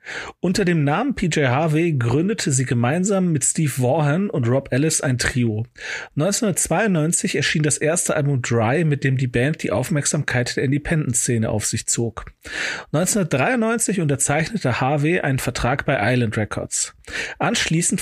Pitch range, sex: 125-165 Hz, male